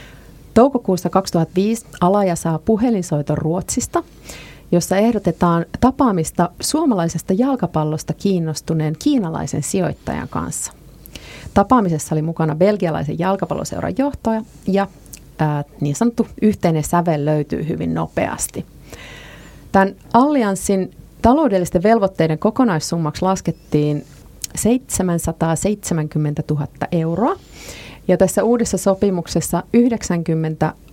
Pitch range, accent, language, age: 155-200 Hz, native, Finnish, 30-49